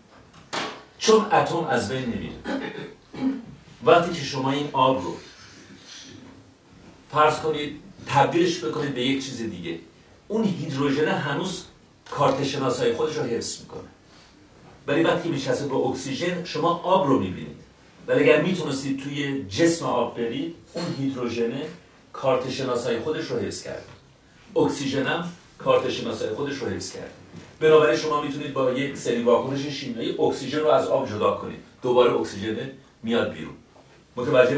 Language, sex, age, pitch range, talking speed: Persian, male, 50-69, 125-165 Hz, 135 wpm